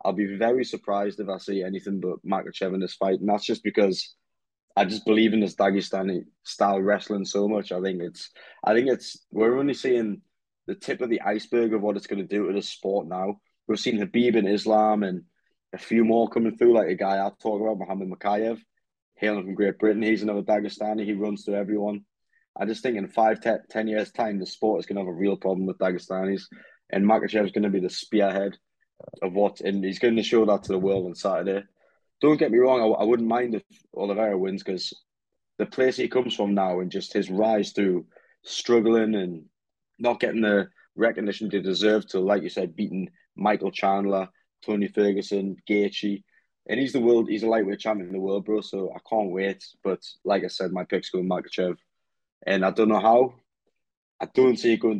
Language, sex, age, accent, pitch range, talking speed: English, male, 20-39, British, 95-110 Hz, 215 wpm